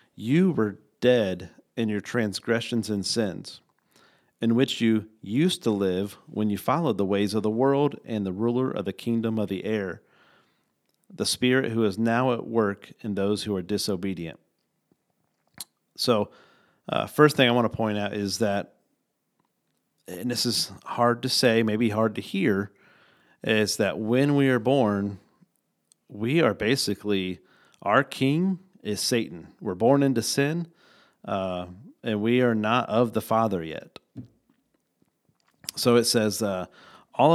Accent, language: American, English